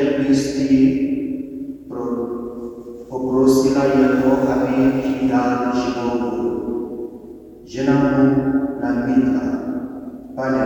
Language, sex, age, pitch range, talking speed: Czech, male, 50-69, 130-155 Hz, 70 wpm